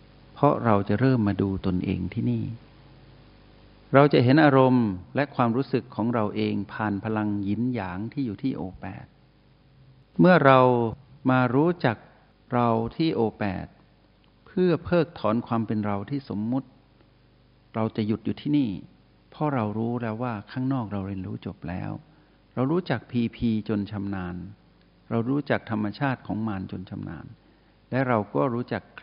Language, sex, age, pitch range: Thai, male, 60-79, 100-125 Hz